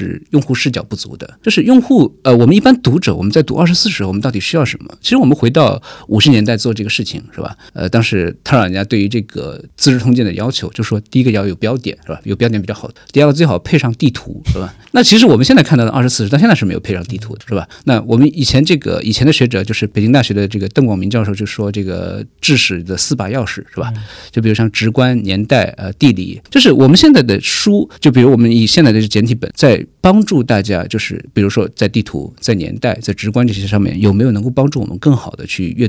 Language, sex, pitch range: Chinese, male, 105-145 Hz